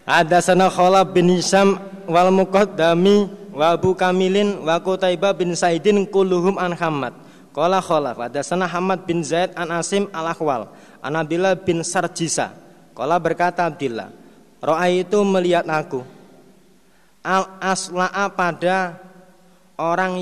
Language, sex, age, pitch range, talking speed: Indonesian, male, 30-49, 170-195 Hz, 100 wpm